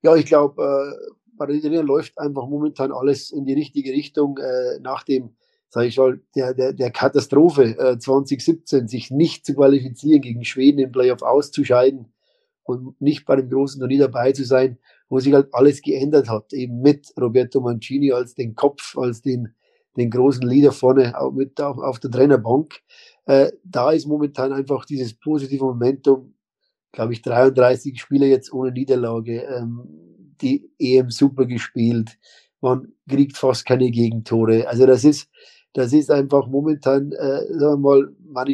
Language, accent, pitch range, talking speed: German, German, 125-145 Hz, 170 wpm